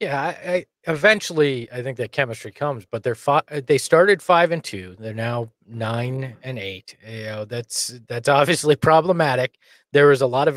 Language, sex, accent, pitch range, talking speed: English, male, American, 115-150 Hz, 185 wpm